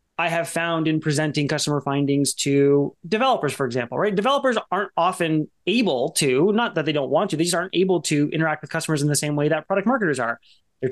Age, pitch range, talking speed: 20-39, 145-185 Hz, 220 wpm